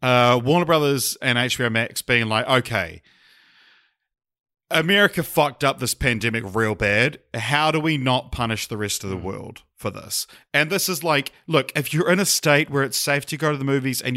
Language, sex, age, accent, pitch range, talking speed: English, male, 40-59, Australian, 115-145 Hz, 200 wpm